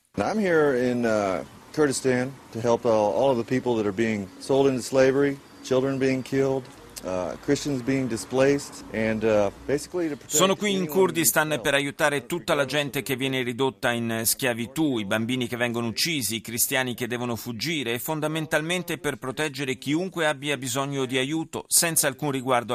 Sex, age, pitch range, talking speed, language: male, 30-49, 115-145 Hz, 150 wpm, Italian